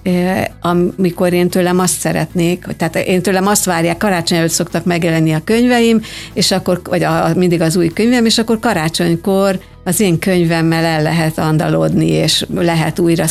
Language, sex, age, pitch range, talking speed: Hungarian, female, 60-79, 170-195 Hz, 150 wpm